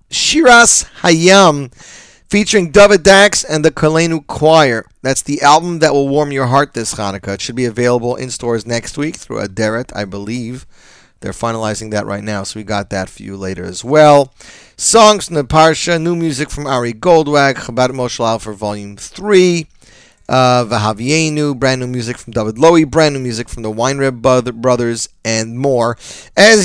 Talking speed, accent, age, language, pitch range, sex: 180 wpm, American, 30-49, English, 120-180 Hz, male